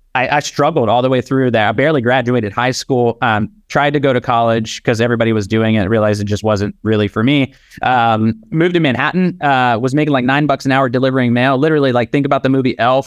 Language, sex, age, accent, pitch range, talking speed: English, male, 20-39, American, 120-145 Hz, 235 wpm